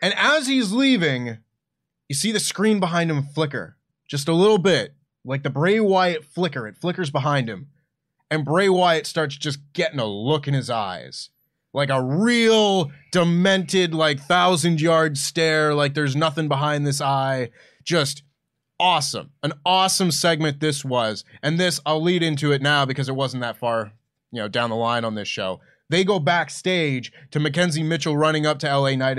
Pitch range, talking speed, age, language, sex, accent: 140-175 Hz, 180 wpm, 20-39, English, male, American